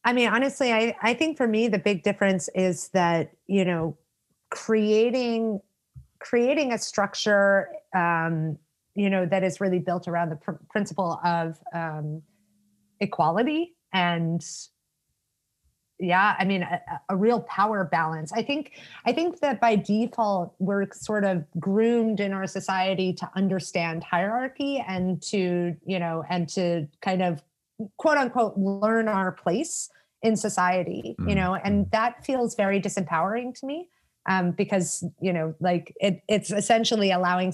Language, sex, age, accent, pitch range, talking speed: English, female, 30-49, American, 175-215 Hz, 145 wpm